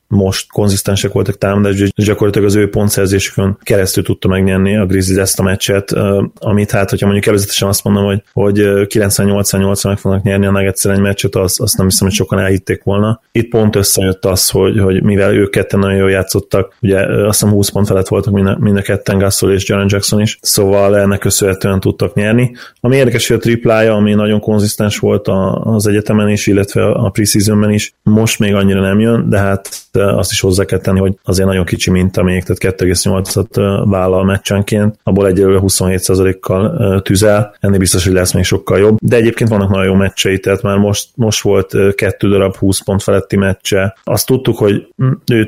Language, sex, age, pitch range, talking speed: Hungarian, male, 20-39, 95-105 Hz, 185 wpm